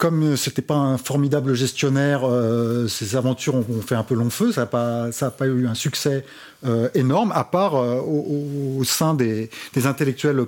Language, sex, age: French, male, 30-49